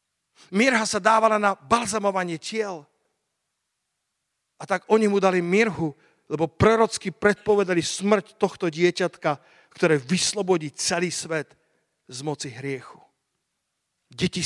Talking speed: 110 wpm